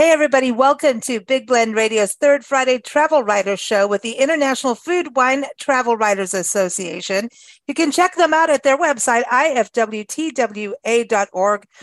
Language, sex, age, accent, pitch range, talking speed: English, female, 40-59, American, 200-265 Hz, 145 wpm